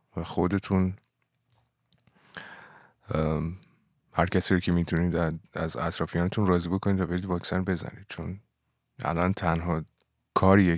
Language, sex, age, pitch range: Persian, male, 30-49, 80-95 Hz